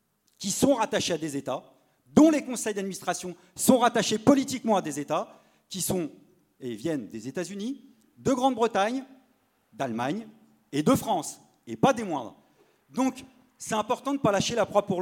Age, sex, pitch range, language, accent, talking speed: 40-59, male, 160-225 Hz, French, French, 170 wpm